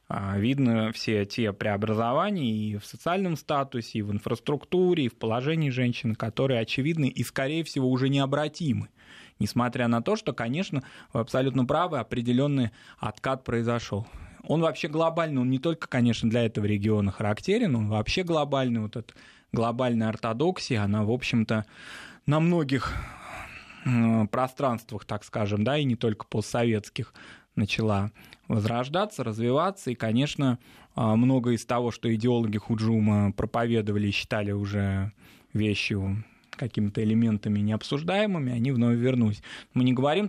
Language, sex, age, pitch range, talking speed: Russian, male, 20-39, 110-135 Hz, 130 wpm